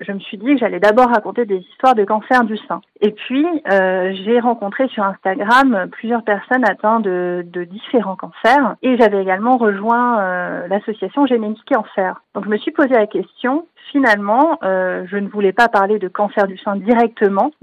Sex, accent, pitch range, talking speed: female, French, 200-255 Hz, 185 wpm